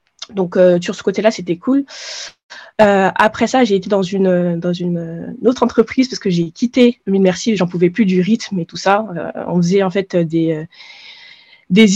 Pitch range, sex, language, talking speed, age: 175-215 Hz, female, French, 200 wpm, 20-39